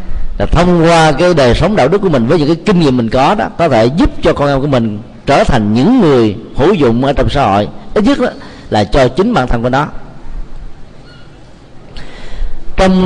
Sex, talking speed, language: male, 210 wpm, Vietnamese